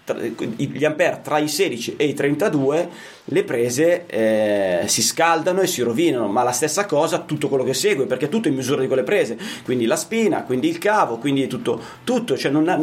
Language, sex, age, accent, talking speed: Italian, male, 30-49, native, 210 wpm